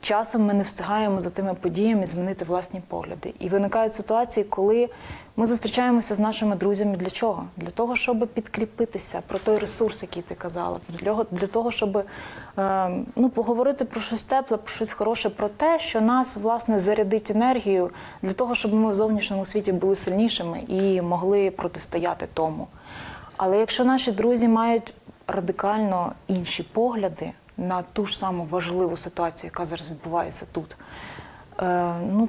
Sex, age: female, 20-39